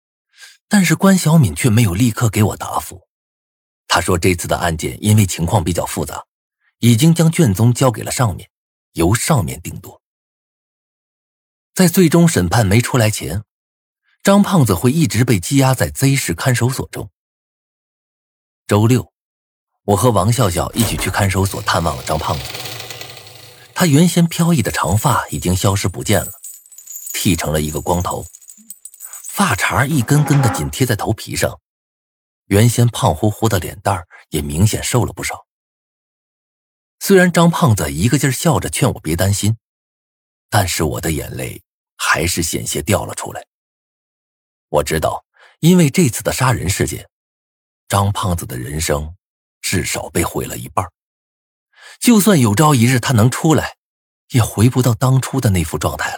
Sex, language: male, Chinese